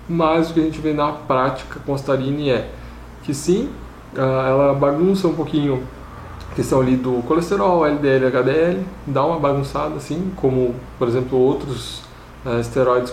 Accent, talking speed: Brazilian, 155 wpm